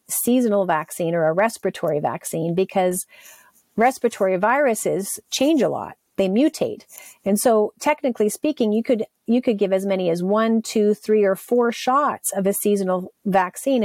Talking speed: 155 wpm